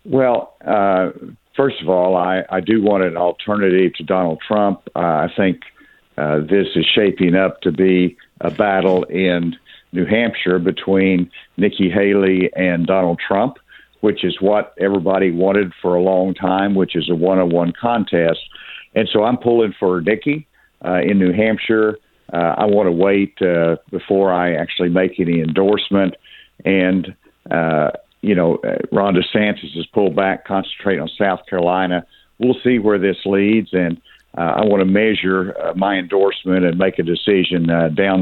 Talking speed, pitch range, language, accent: 160 wpm, 90-100 Hz, English, American